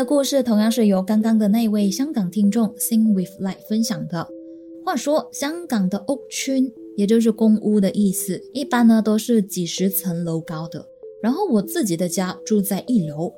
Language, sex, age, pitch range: Chinese, female, 20-39, 185-240 Hz